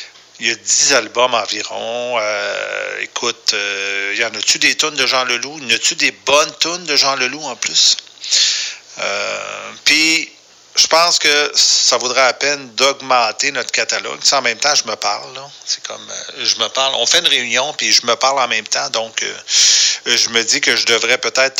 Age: 40-59